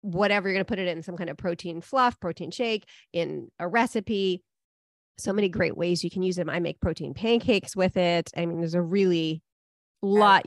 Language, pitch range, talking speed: English, 180-225 Hz, 210 wpm